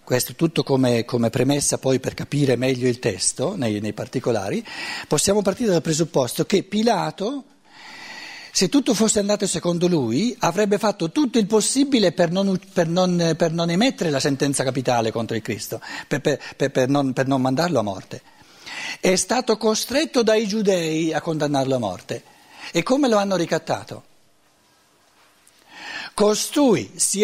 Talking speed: 145 wpm